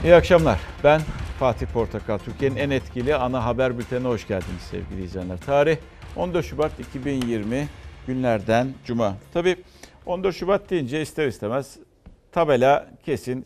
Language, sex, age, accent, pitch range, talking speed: Turkish, male, 60-79, native, 100-150 Hz, 130 wpm